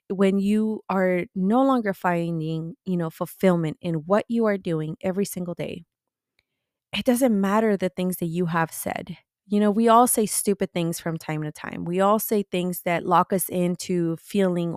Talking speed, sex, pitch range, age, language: 185 wpm, female, 170-210 Hz, 20-39, English